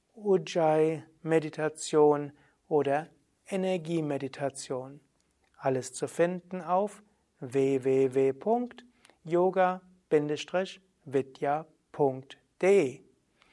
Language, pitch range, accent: German, 145-180 Hz, German